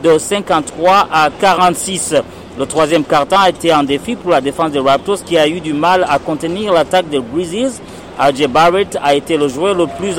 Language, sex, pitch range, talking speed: French, male, 150-185 Hz, 195 wpm